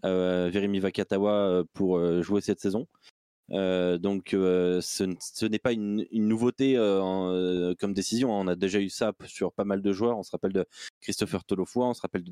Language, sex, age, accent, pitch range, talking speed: French, male, 20-39, French, 95-120 Hz, 165 wpm